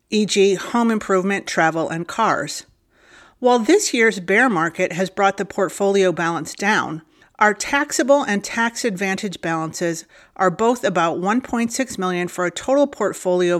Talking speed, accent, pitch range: 140 wpm, American, 170-230 Hz